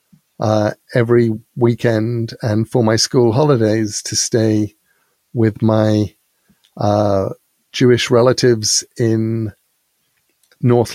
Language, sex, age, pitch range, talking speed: English, male, 50-69, 110-130 Hz, 95 wpm